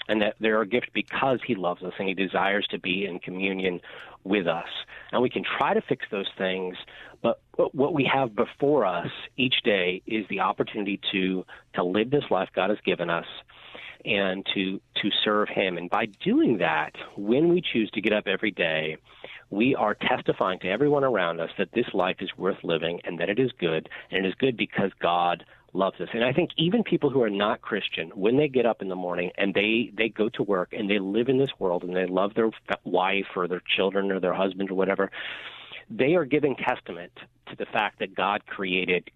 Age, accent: 40-59, American